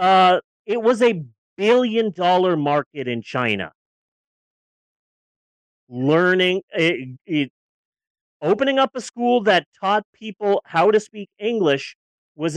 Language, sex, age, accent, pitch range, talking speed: English, male, 40-59, American, 150-230 Hz, 100 wpm